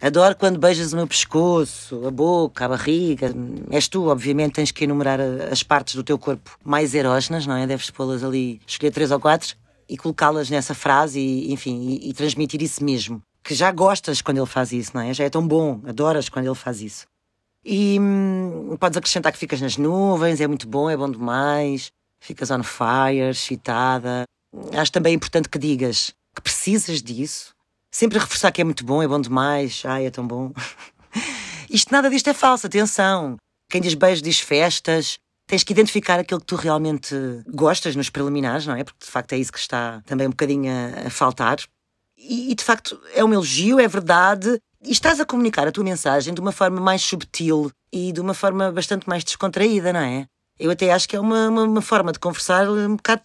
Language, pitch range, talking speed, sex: Portuguese, 130-185 Hz, 200 wpm, female